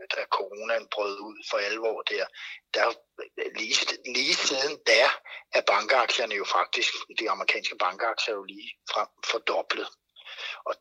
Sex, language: male, Danish